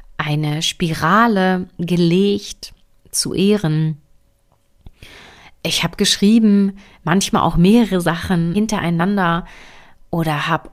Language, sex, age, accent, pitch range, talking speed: German, female, 30-49, German, 155-190 Hz, 85 wpm